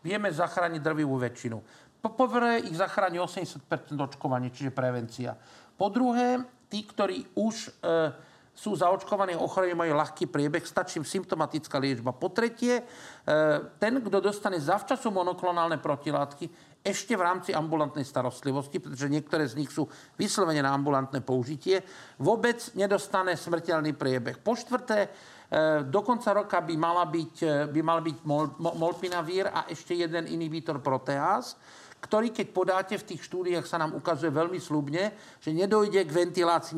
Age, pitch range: 50-69, 155-200 Hz